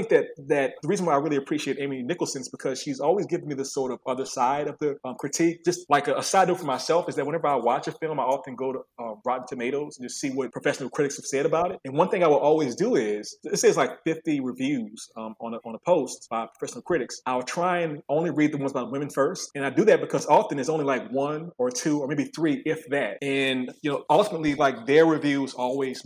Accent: American